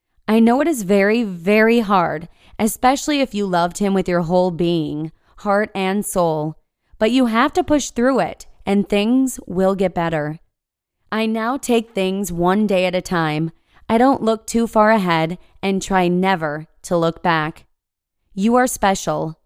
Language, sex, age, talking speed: English, female, 20-39, 170 wpm